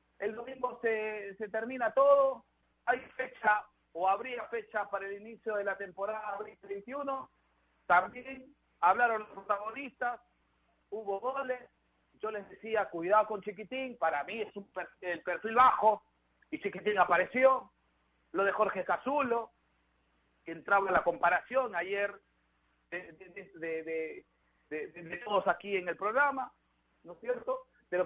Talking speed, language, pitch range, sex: 145 wpm, Spanish, 155-215 Hz, male